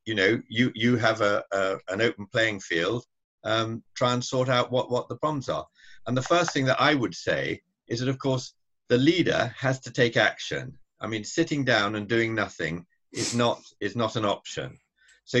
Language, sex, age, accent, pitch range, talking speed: English, male, 50-69, British, 105-130 Hz, 205 wpm